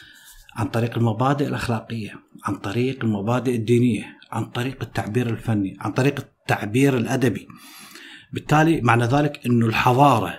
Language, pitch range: Arabic, 120-155 Hz